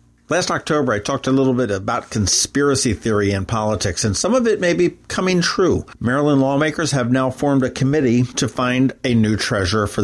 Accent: American